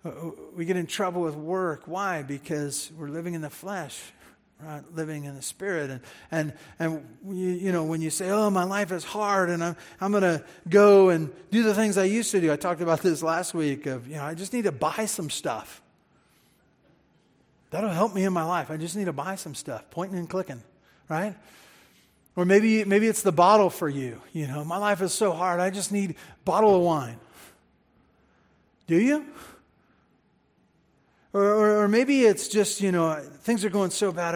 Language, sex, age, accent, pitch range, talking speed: English, male, 40-59, American, 150-200 Hz, 205 wpm